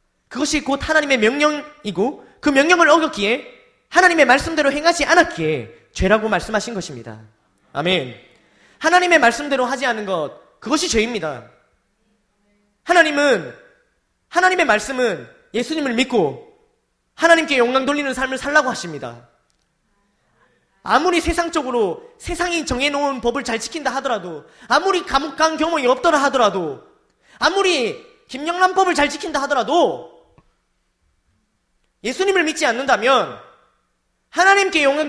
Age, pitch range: 20-39, 215-330 Hz